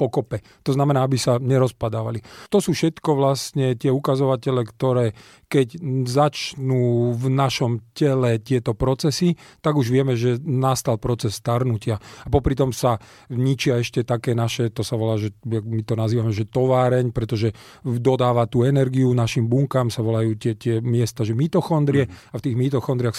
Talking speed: 160 wpm